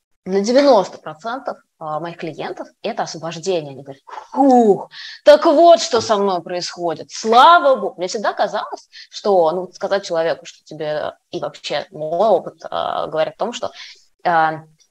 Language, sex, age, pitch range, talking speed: Russian, female, 20-39, 170-250 Hz, 135 wpm